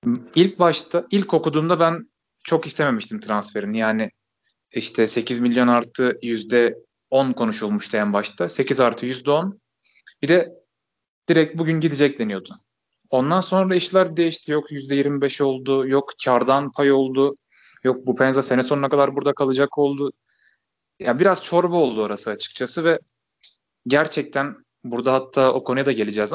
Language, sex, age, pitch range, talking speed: Turkish, male, 30-49, 120-155 Hz, 140 wpm